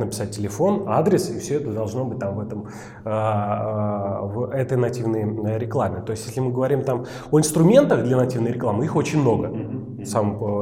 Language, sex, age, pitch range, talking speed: Russian, male, 30-49, 105-135 Hz, 170 wpm